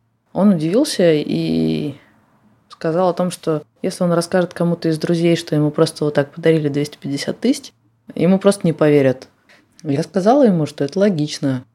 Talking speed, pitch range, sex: 160 wpm, 130-165 Hz, female